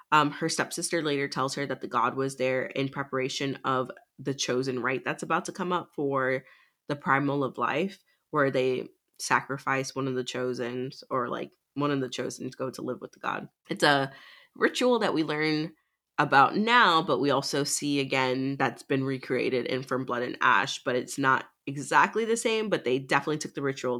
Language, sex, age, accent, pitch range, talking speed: English, female, 20-39, American, 135-160 Hz, 200 wpm